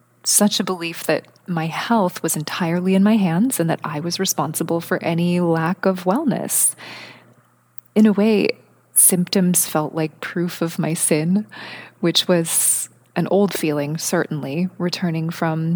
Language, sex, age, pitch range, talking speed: English, female, 20-39, 170-200 Hz, 150 wpm